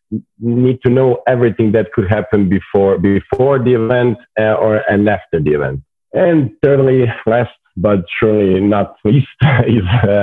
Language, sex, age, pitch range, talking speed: English, male, 40-59, 100-120 Hz, 155 wpm